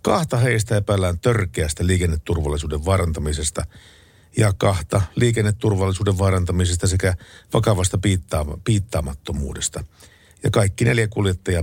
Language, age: Finnish, 50-69